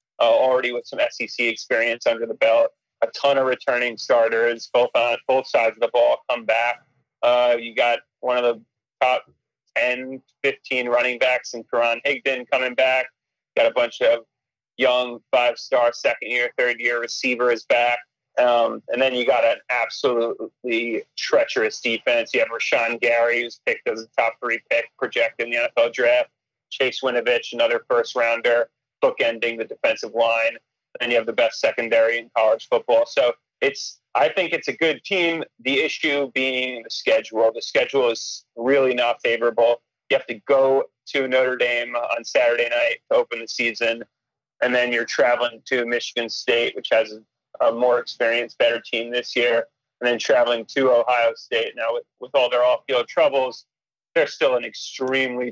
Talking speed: 175 wpm